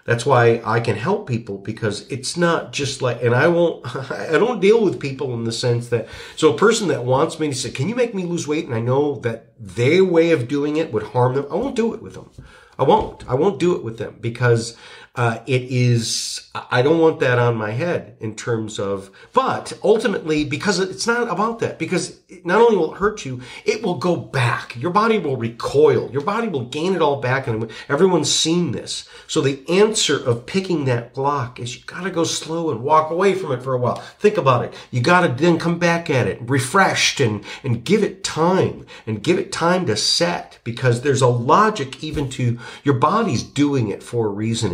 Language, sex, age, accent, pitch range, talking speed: English, male, 40-59, American, 120-170 Hz, 220 wpm